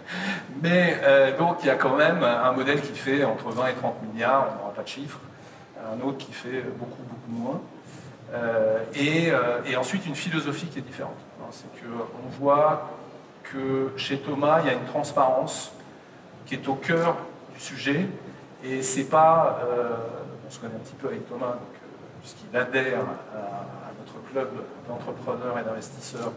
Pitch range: 125-160 Hz